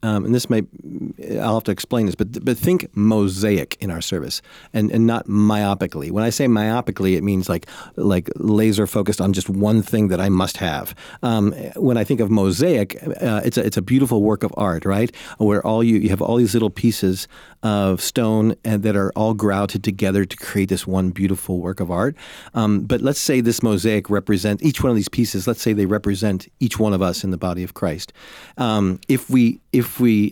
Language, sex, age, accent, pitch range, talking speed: English, male, 40-59, American, 100-125 Hz, 210 wpm